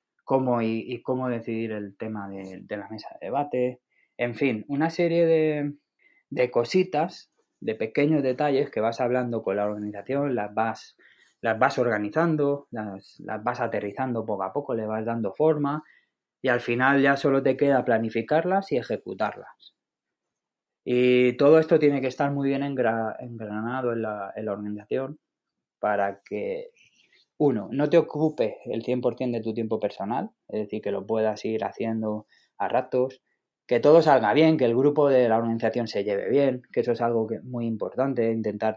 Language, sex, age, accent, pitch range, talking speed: Spanish, male, 20-39, Spanish, 110-140 Hz, 175 wpm